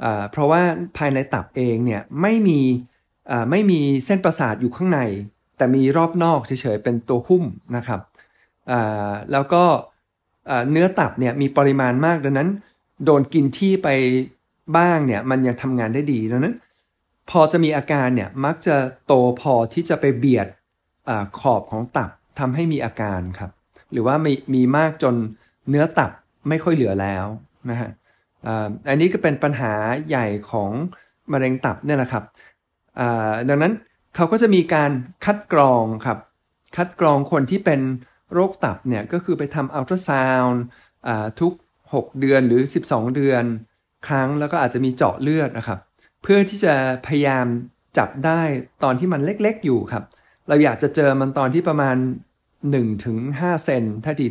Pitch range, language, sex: 120-155 Hz, Thai, male